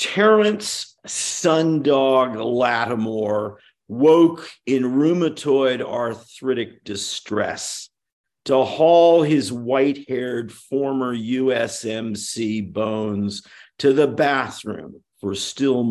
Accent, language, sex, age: American, English, male, 50-69